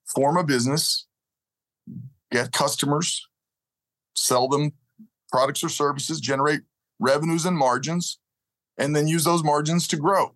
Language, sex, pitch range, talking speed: English, male, 125-160 Hz, 120 wpm